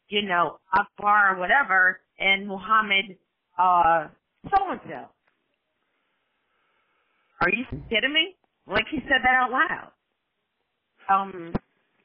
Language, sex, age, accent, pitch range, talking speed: English, female, 40-59, American, 180-255 Hz, 100 wpm